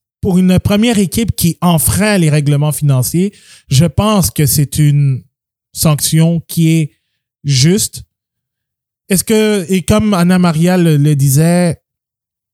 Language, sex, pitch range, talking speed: French, male, 125-170 Hz, 130 wpm